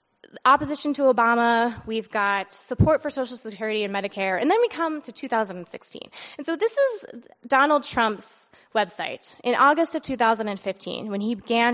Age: 20-39